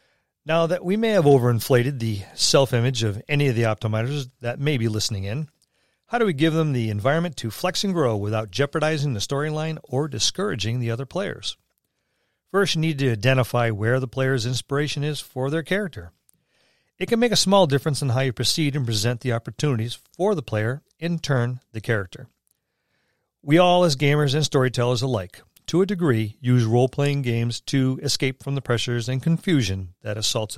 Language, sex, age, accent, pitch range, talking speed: English, male, 40-59, American, 115-150 Hz, 185 wpm